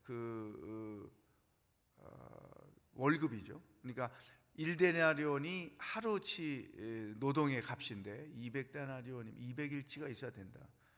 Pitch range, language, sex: 120-150 Hz, Korean, male